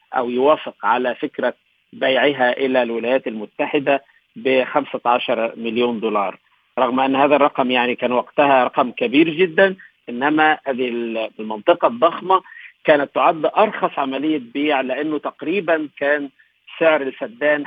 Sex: male